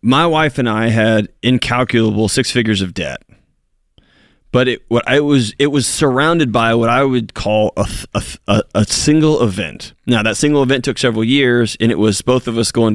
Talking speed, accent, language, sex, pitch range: 205 wpm, American, English, male, 110-135 Hz